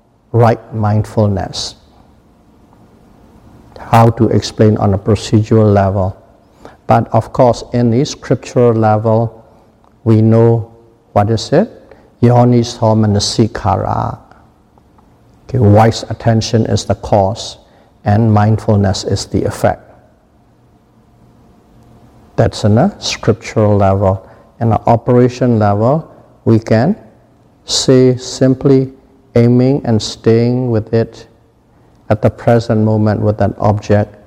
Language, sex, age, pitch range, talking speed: English, male, 50-69, 105-120 Hz, 105 wpm